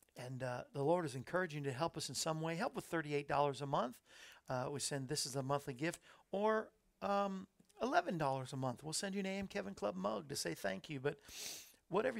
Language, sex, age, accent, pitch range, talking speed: English, male, 50-69, American, 140-185 Hz, 220 wpm